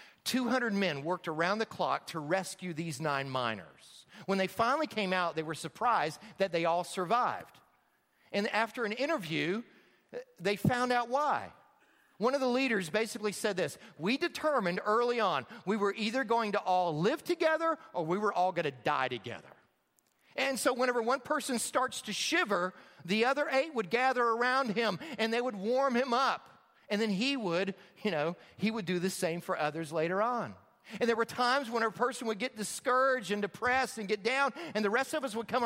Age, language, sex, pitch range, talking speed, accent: 40-59, English, male, 180-260 Hz, 195 wpm, American